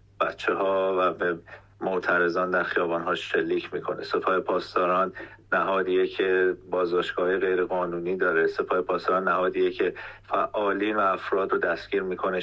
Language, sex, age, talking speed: Persian, male, 40-59, 125 wpm